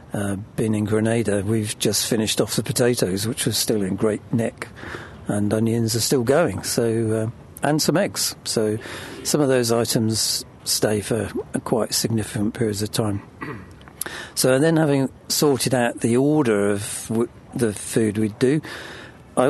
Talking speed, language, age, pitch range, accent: 165 wpm, English, 50-69, 105-125 Hz, British